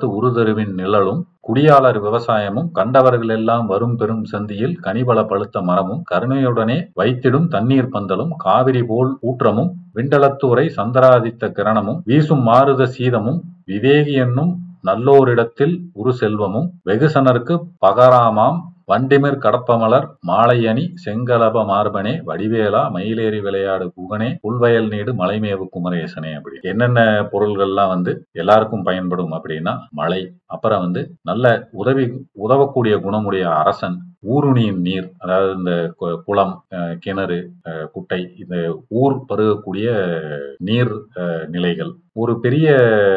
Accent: native